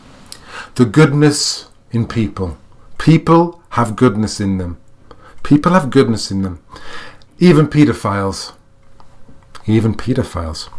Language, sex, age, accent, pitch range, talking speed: English, male, 40-59, British, 110-155 Hz, 100 wpm